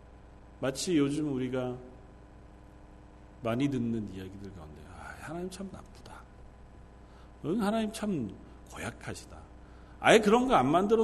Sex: male